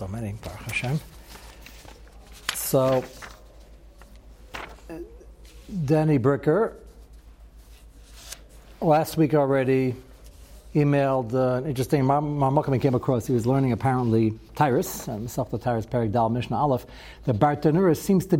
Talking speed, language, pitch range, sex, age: 100 wpm, English, 120-160 Hz, male, 60-79